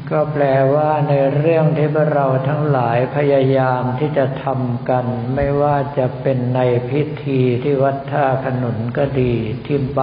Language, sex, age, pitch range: Thai, male, 60-79, 125-140 Hz